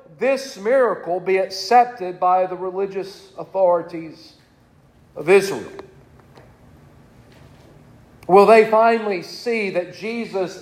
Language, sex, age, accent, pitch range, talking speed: English, male, 50-69, American, 165-215 Hz, 90 wpm